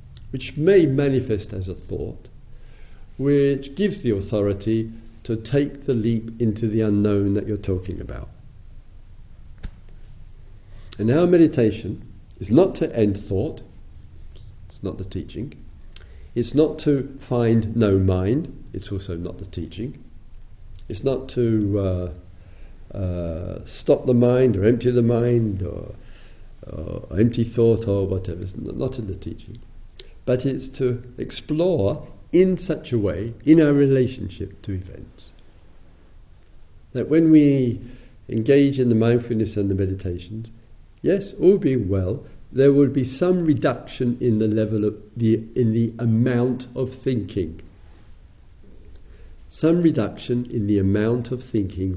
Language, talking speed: English, 135 wpm